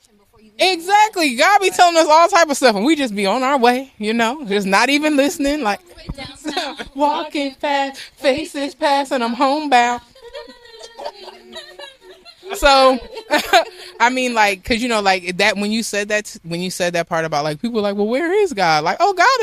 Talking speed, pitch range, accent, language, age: 180 wpm, 185-285 Hz, American, English, 20-39